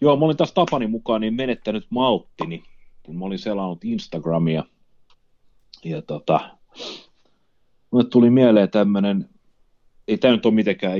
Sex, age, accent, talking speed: male, 30-49, native, 135 wpm